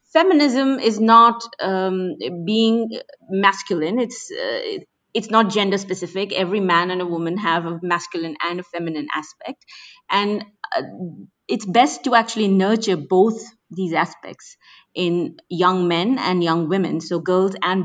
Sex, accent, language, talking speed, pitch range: female, native, Hindi, 145 wpm, 180-245 Hz